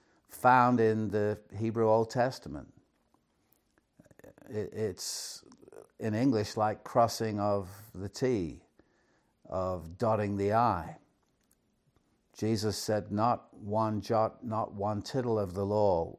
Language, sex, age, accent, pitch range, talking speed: English, male, 60-79, British, 105-130 Hz, 110 wpm